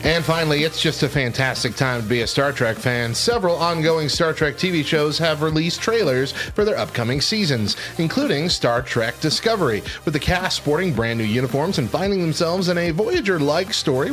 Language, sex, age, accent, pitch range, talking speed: English, male, 30-49, American, 120-170 Hz, 185 wpm